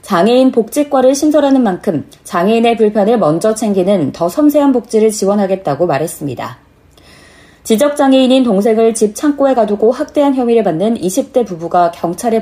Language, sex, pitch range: Korean, female, 185-245 Hz